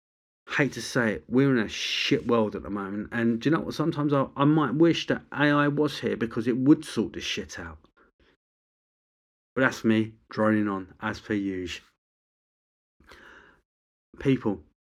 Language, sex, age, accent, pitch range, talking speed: English, male, 30-49, British, 100-135 Hz, 170 wpm